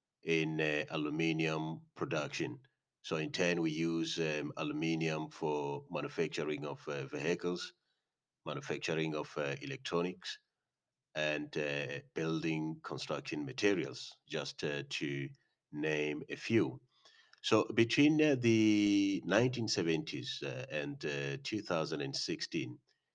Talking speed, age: 100 wpm, 40-59